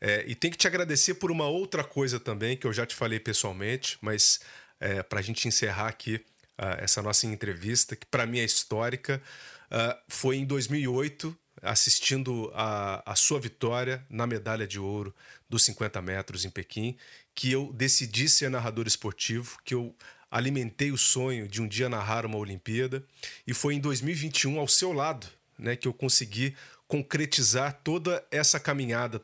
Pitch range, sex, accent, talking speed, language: 115-135 Hz, male, Brazilian, 170 wpm, Portuguese